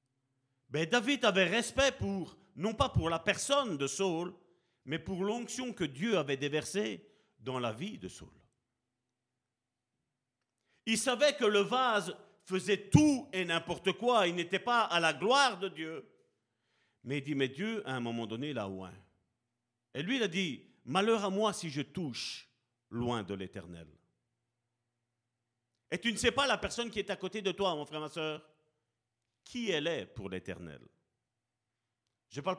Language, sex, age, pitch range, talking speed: French, male, 50-69, 120-195 Hz, 170 wpm